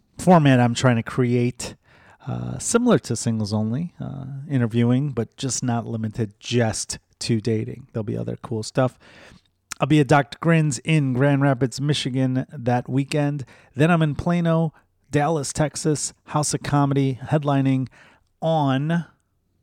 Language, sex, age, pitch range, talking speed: English, male, 30-49, 115-145 Hz, 140 wpm